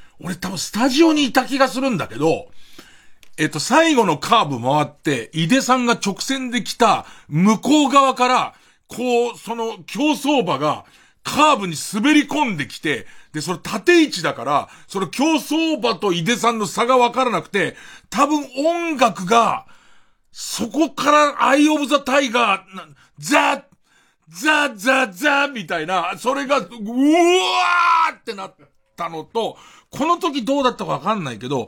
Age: 40-59